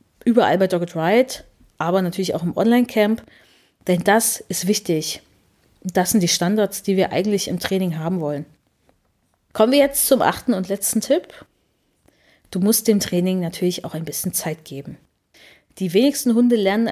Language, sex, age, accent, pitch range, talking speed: German, female, 30-49, German, 180-215 Hz, 165 wpm